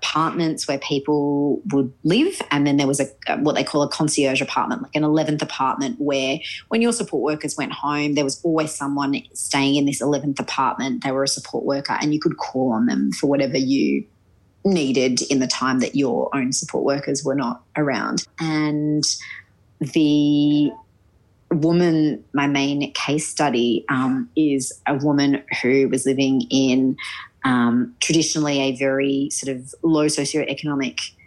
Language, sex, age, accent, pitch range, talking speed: English, female, 30-49, Australian, 135-160 Hz, 165 wpm